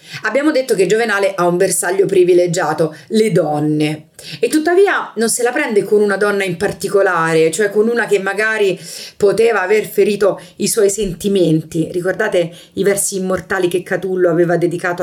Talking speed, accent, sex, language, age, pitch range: 160 wpm, native, female, Italian, 30-49, 170-245 Hz